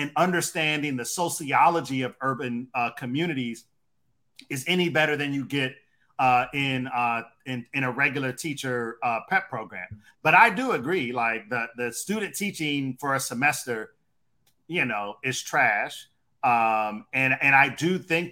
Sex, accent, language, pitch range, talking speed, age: male, American, English, 125-155 Hz, 155 wpm, 40-59